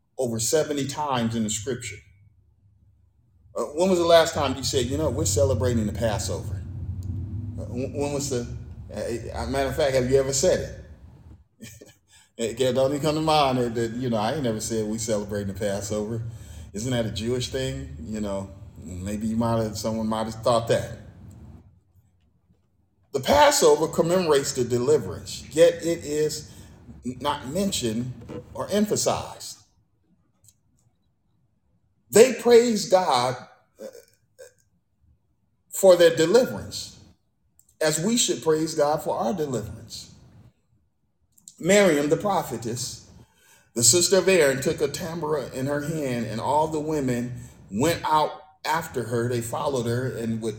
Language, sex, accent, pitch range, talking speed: English, male, American, 105-150 Hz, 140 wpm